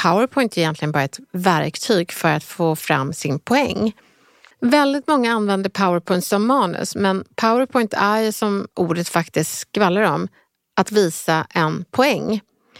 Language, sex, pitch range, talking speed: Swedish, female, 165-235 Hz, 140 wpm